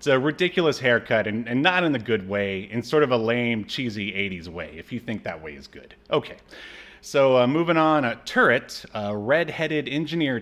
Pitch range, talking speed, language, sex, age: 105-145 Hz, 205 wpm, English, male, 30-49